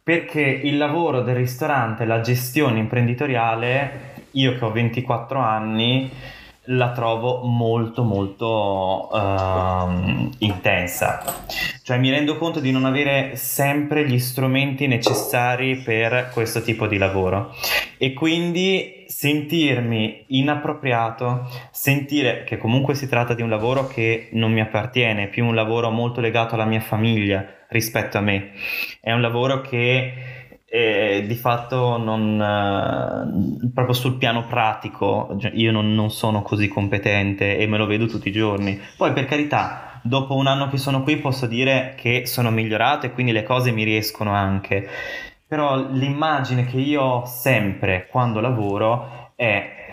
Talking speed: 140 wpm